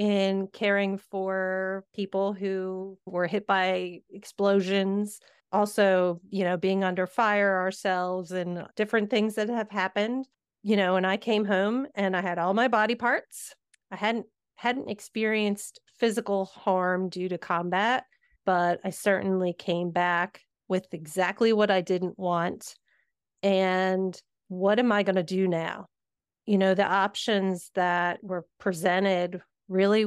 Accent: American